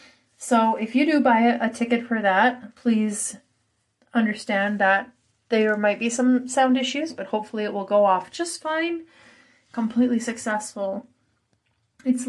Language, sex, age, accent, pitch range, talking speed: English, female, 30-49, American, 200-235 Hz, 140 wpm